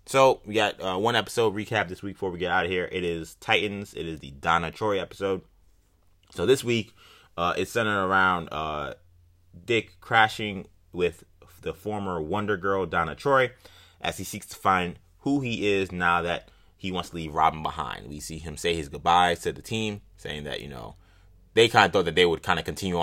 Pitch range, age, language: 80-100 Hz, 20-39, English